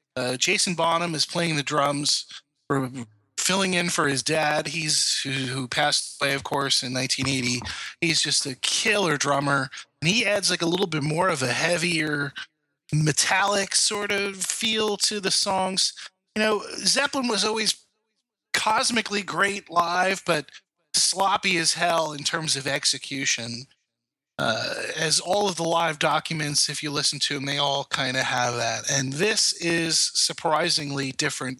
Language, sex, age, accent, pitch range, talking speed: English, male, 20-39, American, 140-180 Hz, 155 wpm